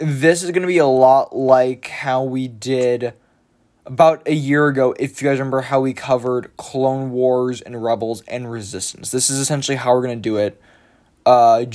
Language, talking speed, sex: English, 195 wpm, male